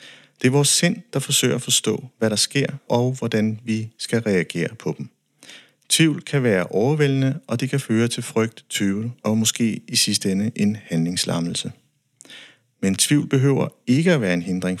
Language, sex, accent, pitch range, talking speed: Danish, male, native, 100-125 Hz, 180 wpm